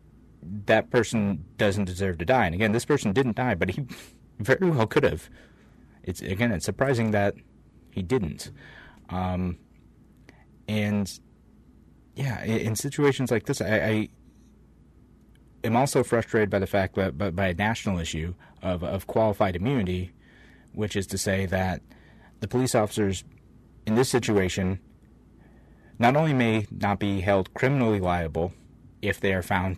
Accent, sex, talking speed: American, male, 150 wpm